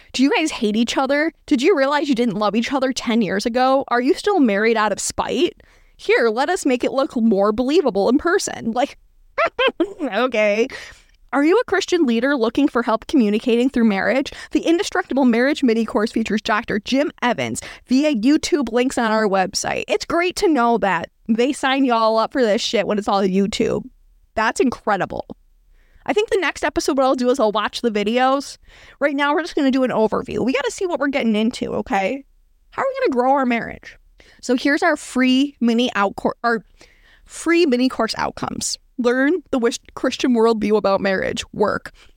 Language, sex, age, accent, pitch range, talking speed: English, female, 20-39, American, 225-290 Hz, 200 wpm